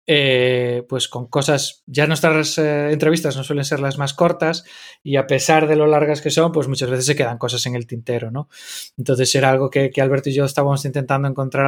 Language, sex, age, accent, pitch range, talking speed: Spanish, male, 20-39, Spanish, 130-155 Hz, 220 wpm